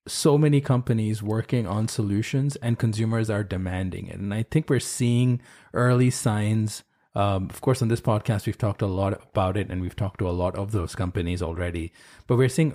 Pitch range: 95-120 Hz